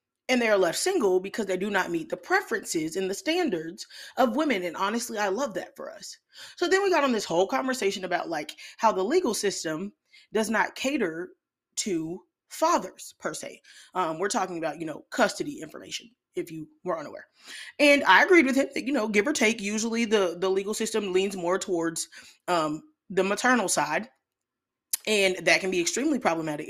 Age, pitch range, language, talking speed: 30-49, 175-265 Hz, English, 195 wpm